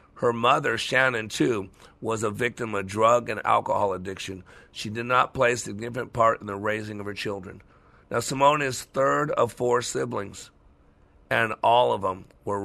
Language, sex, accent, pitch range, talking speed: English, male, American, 100-120 Hz, 175 wpm